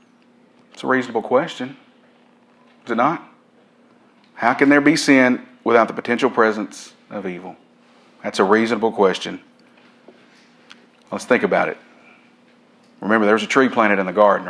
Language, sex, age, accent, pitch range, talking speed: English, male, 40-59, American, 100-135 Hz, 145 wpm